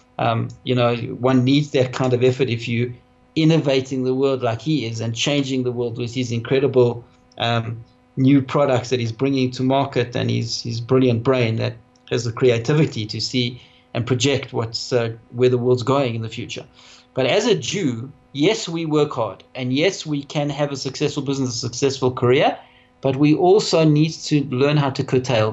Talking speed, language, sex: 195 wpm, English, male